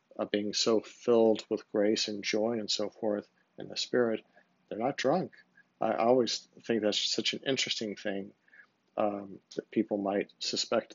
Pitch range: 105-115 Hz